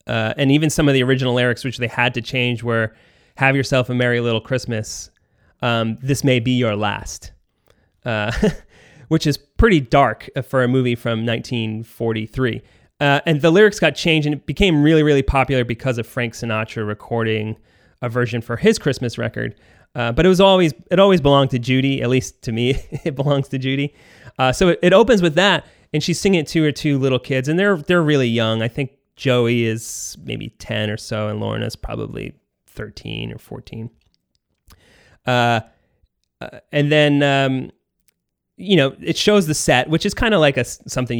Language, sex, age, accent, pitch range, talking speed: English, male, 30-49, American, 115-145 Hz, 190 wpm